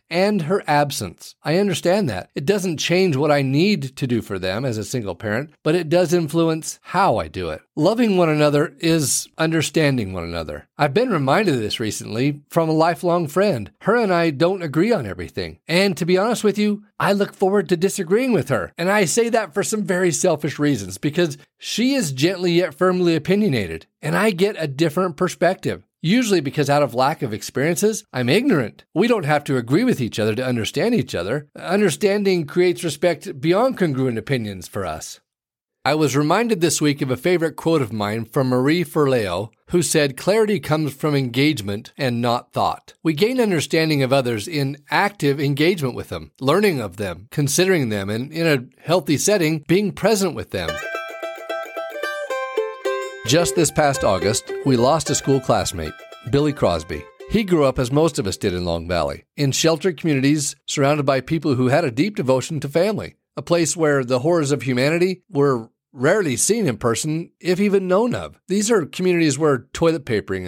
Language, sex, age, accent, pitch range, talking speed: English, male, 40-59, American, 130-180 Hz, 185 wpm